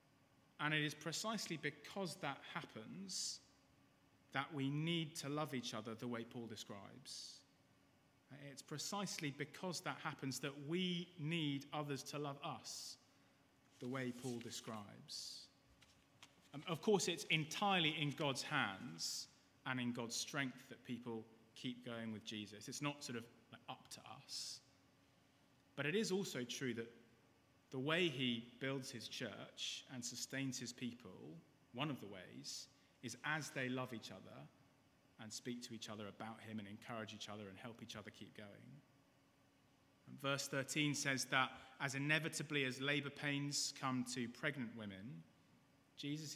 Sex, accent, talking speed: male, British, 150 wpm